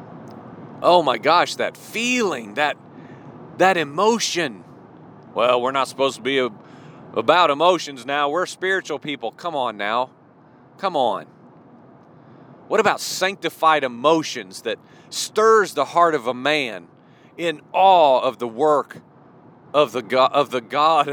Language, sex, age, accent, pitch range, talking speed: English, male, 40-59, American, 145-215 Hz, 135 wpm